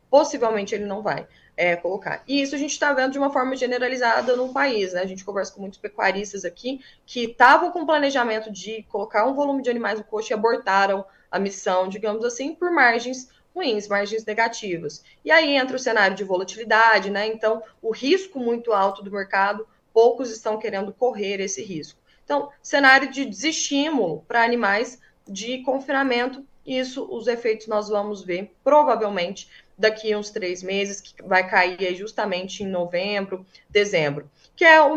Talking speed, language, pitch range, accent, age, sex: 170 wpm, Portuguese, 195-250 Hz, Brazilian, 20-39, female